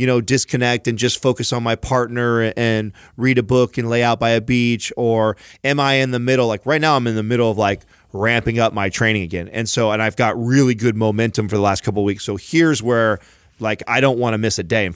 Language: English